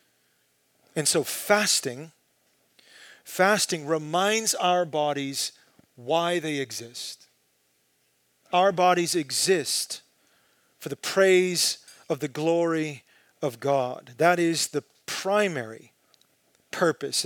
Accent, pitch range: American, 130-185 Hz